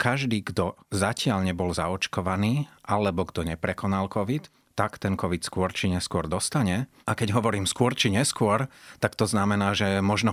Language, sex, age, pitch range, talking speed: Slovak, male, 30-49, 95-115 Hz, 155 wpm